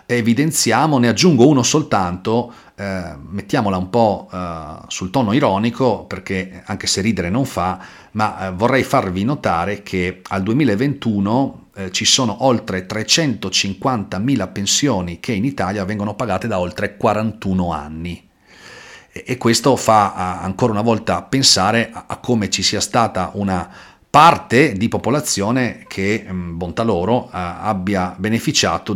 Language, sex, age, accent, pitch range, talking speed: Italian, male, 40-59, native, 95-120 Hz, 135 wpm